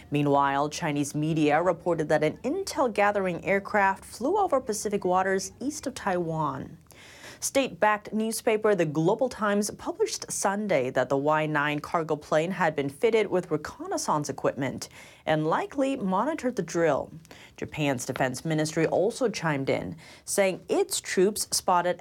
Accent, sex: American, female